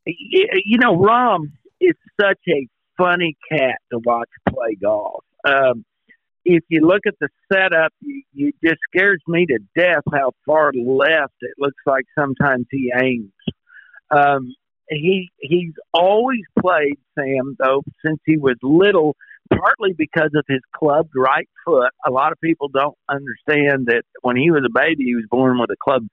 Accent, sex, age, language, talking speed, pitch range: American, male, 50-69, English, 165 wpm, 135-170 Hz